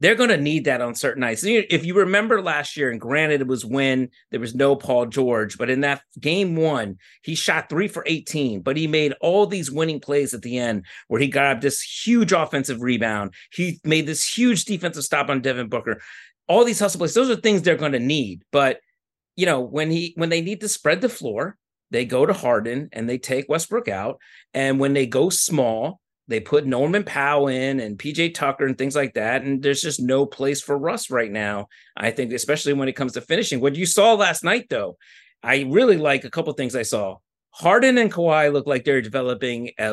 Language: English